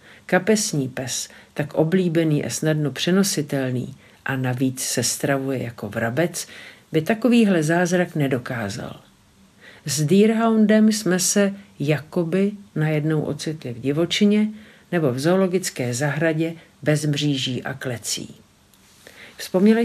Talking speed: 105 wpm